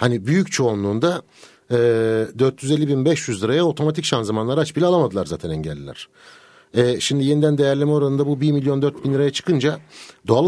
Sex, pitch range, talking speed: male, 110-140 Hz, 160 wpm